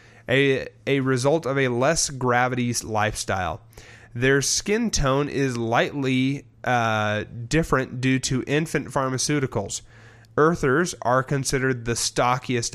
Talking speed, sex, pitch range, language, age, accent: 110 wpm, male, 115-140 Hz, English, 30-49, American